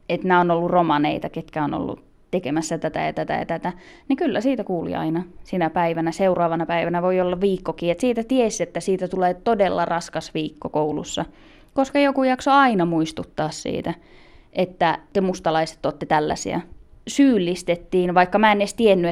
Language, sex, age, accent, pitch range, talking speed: Finnish, female, 20-39, native, 170-210 Hz, 165 wpm